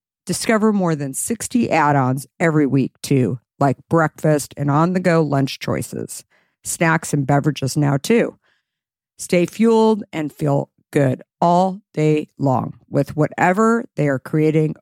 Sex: female